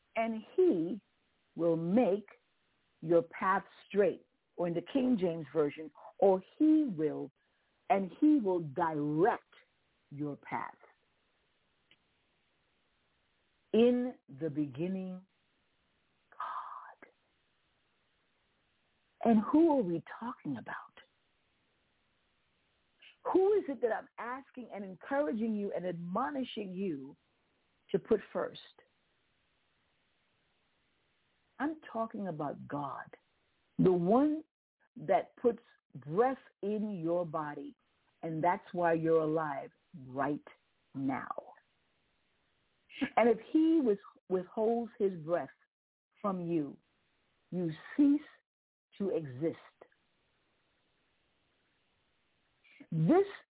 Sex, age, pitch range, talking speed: female, 50-69, 165-245 Hz, 90 wpm